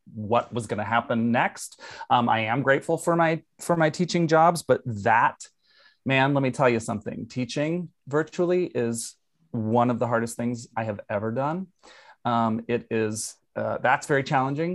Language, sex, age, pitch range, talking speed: English, male, 30-49, 115-145 Hz, 170 wpm